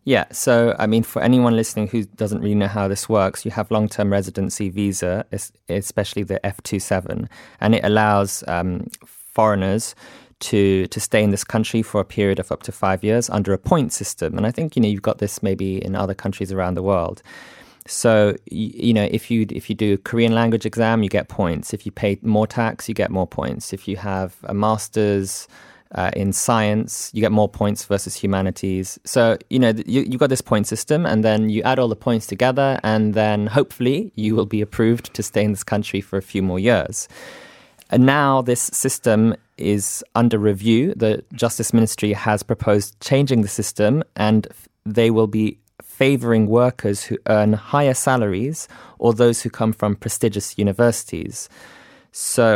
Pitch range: 100-115 Hz